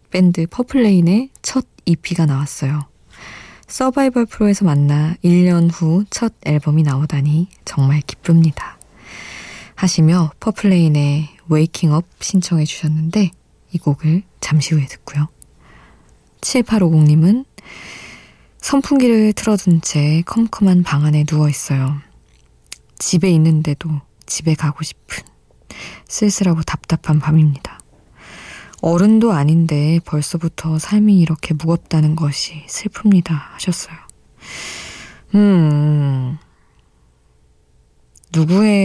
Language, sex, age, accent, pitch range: Korean, female, 20-39, native, 145-180 Hz